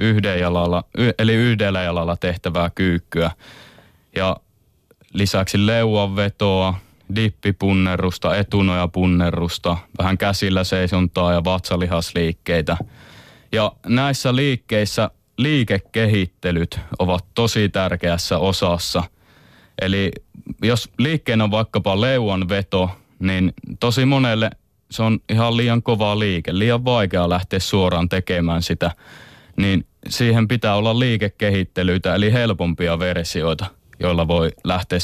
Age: 20-39